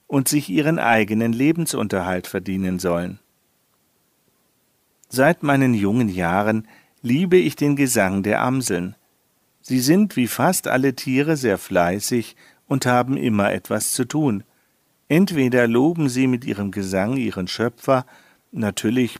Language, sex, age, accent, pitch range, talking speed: German, male, 50-69, German, 105-140 Hz, 125 wpm